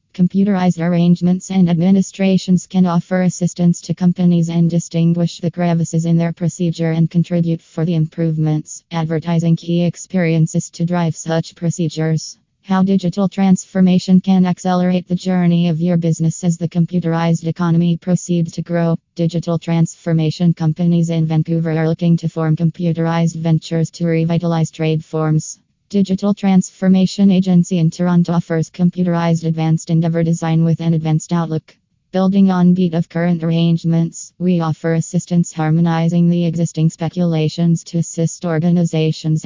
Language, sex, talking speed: English, female, 135 wpm